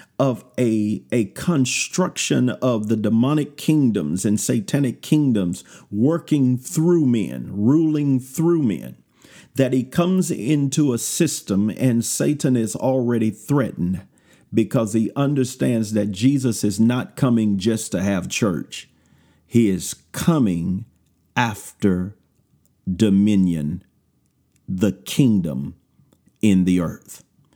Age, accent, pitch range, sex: 50-69, American, 100-135 Hz, male